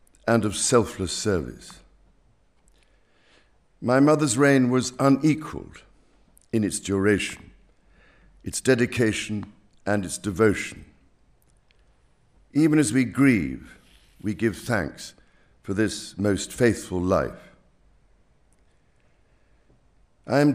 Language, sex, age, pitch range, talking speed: Spanish, male, 60-79, 100-120 Hz, 90 wpm